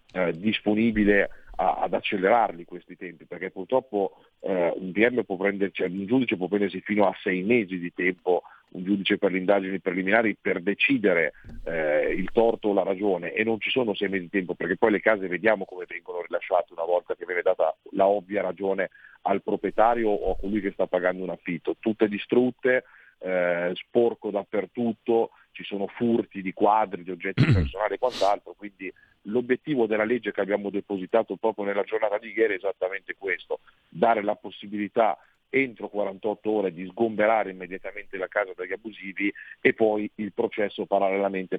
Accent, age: native, 40-59